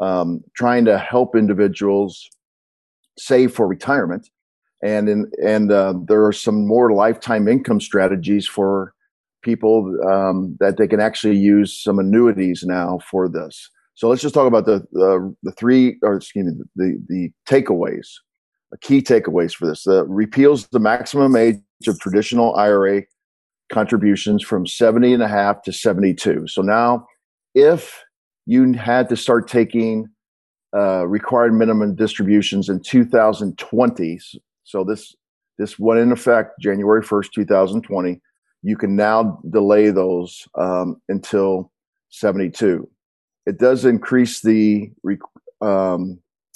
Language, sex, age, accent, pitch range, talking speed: English, male, 50-69, American, 100-120 Hz, 135 wpm